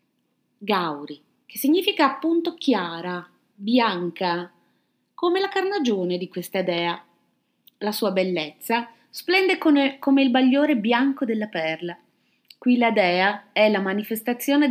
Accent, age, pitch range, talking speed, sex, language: native, 30-49, 180-260 Hz, 115 wpm, female, Italian